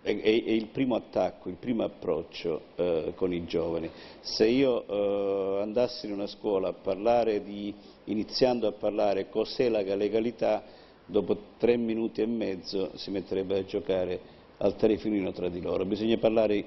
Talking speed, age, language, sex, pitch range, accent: 155 wpm, 50-69, Italian, male, 100-115 Hz, native